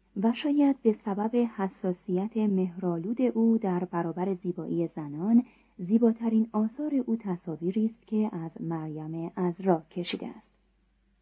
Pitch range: 170-225 Hz